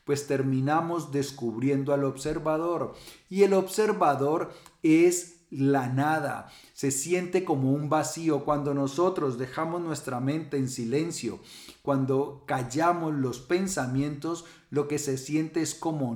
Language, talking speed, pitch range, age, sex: Spanish, 125 wpm, 135-165 Hz, 40-59, male